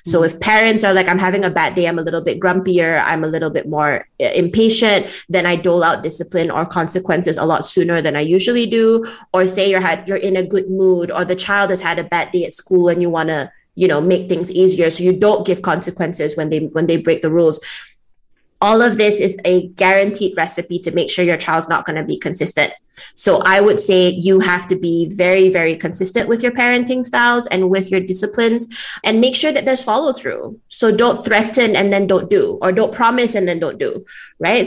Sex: female